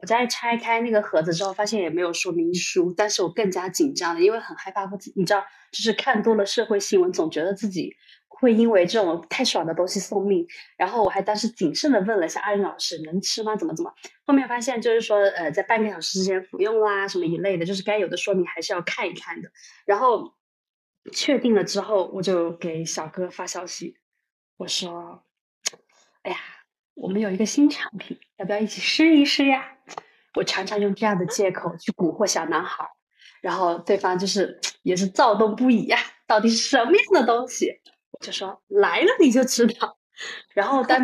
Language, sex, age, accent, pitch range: Chinese, female, 20-39, native, 190-250 Hz